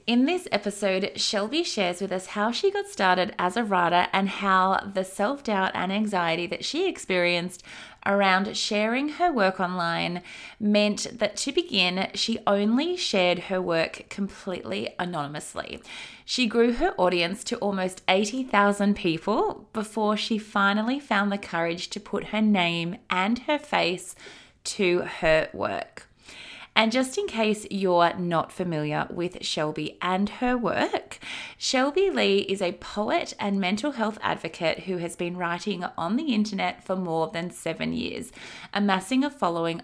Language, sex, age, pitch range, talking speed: English, female, 20-39, 175-225 Hz, 150 wpm